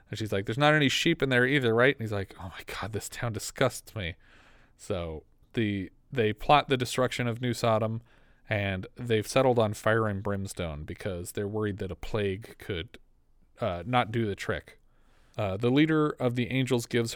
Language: English